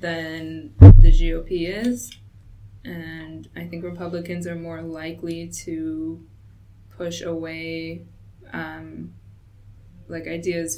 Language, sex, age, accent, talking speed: English, female, 20-39, American, 95 wpm